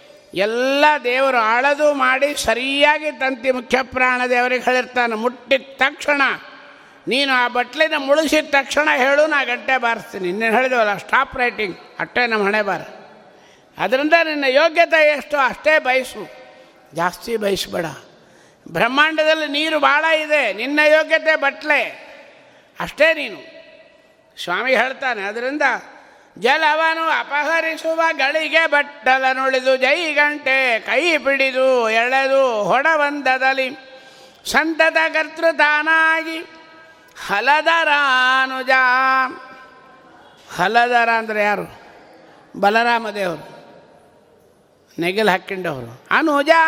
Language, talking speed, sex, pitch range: Kannada, 85 wpm, male, 255-310 Hz